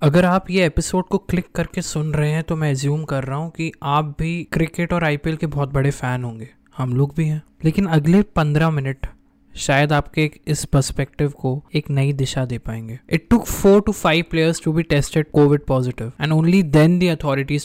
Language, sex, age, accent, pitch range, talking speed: Hindi, male, 20-39, native, 130-160 Hz, 175 wpm